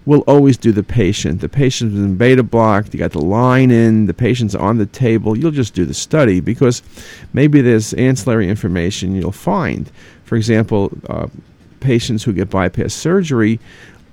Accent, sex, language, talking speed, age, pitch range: American, male, English, 170 wpm, 50-69, 100-130 Hz